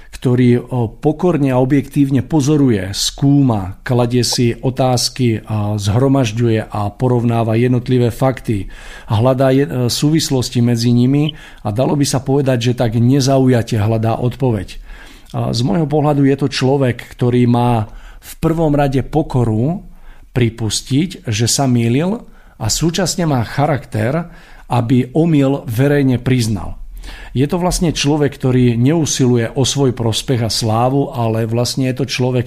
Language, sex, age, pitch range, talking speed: Slovak, male, 50-69, 115-140 Hz, 125 wpm